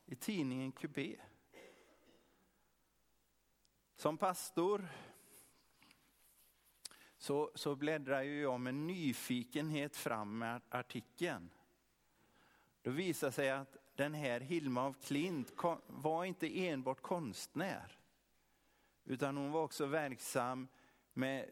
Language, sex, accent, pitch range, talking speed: Swedish, male, native, 125-155 Hz, 90 wpm